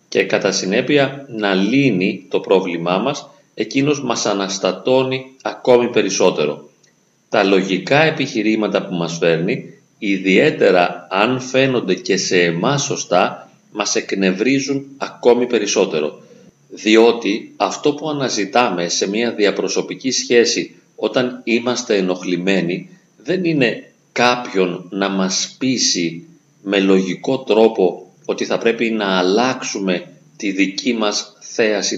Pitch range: 95-130 Hz